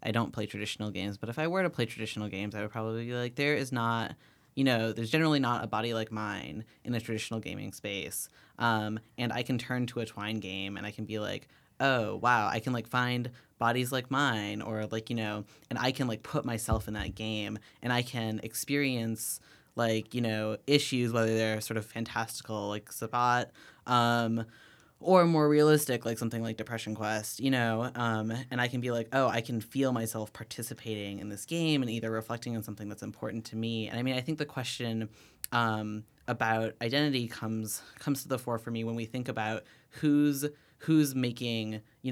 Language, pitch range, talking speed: English, 110-125 Hz, 210 wpm